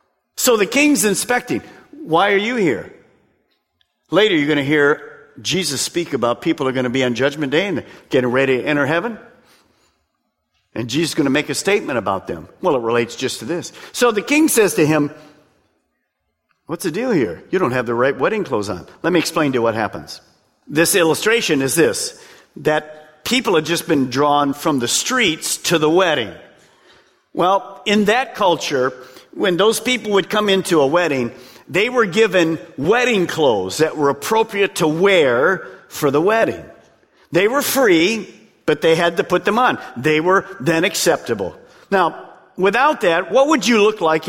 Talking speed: 180 wpm